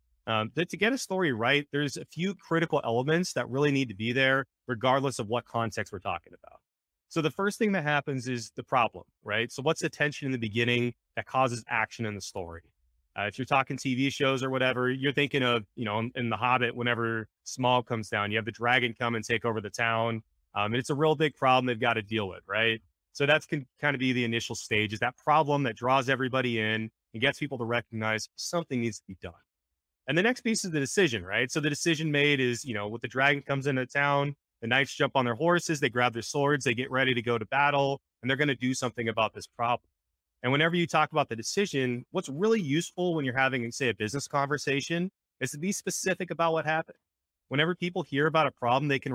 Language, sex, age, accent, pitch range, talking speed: English, male, 30-49, American, 115-150 Hz, 235 wpm